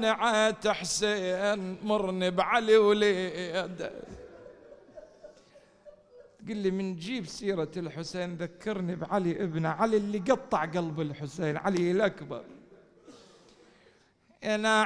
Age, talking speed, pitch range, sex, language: 40-59, 85 wpm, 165-220 Hz, male, English